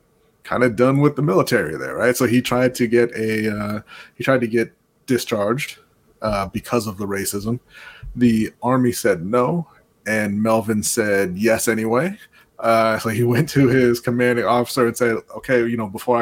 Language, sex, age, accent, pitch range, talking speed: English, male, 20-39, American, 110-125 Hz, 180 wpm